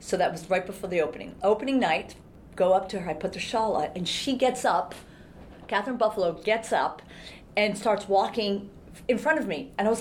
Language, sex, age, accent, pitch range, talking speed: English, female, 40-59, American, 175-240 Hz, 215 wpm